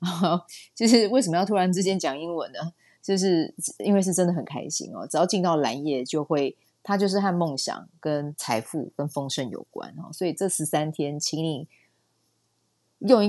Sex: female